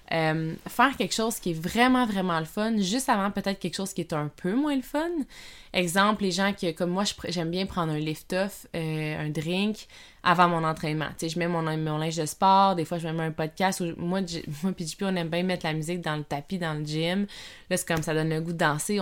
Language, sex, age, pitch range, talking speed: French, female, 20-39, 160-205 Hz, 250 wpm